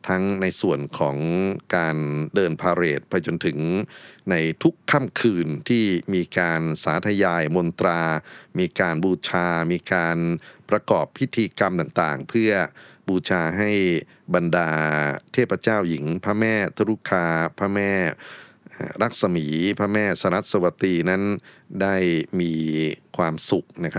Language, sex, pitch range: Thai, male, 80-100 Hz